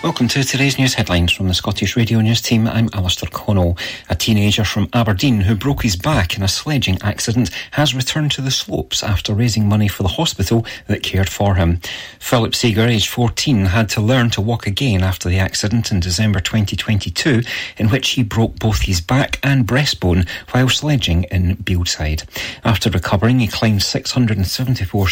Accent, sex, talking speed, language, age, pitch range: British, male, 180 wpm, English, 40-59, 95-120 Hz